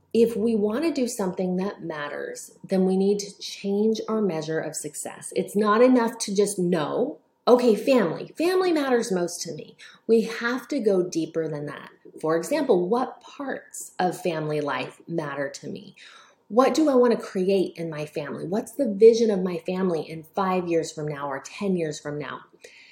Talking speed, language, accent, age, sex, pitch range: 185 wpm, English, American, 30-49, female, 165-230 Hz